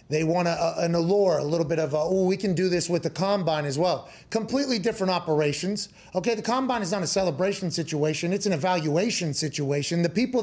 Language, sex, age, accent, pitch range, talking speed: English, male, 30-49, American, 155-190 Hz, 200 wpm